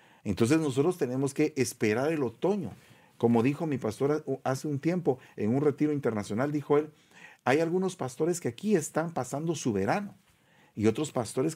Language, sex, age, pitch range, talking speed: English, male, 40-59, 115-170 Hz, 165 wpm